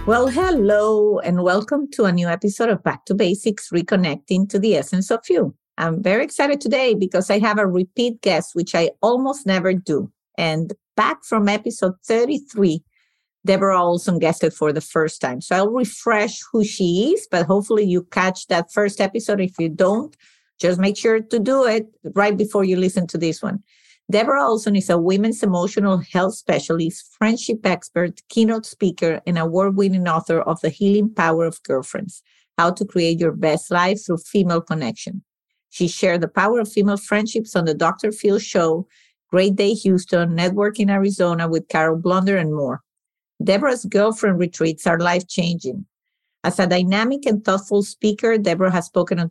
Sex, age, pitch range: female, 50-69, 175-215 Hz